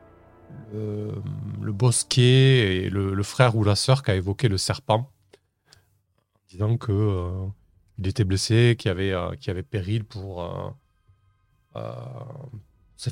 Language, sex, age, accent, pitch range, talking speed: French, male, 30-49, French, 95-125 Hz, 155 wpm